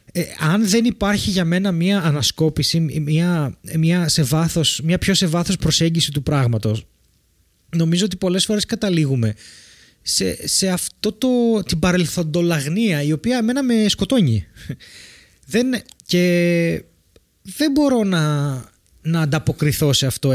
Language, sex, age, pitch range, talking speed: Greek, male, 30-49, 145-200 Hz, 130 wpm